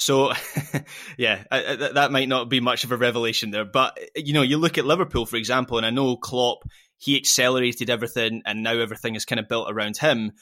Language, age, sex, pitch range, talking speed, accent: English, 20-39, male, 110-140 Hz, 205 wpm, British